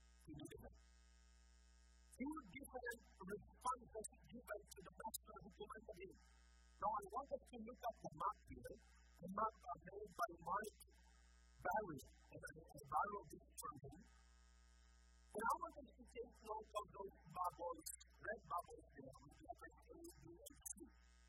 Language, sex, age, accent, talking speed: English, female, 40-59, American, 130 wpm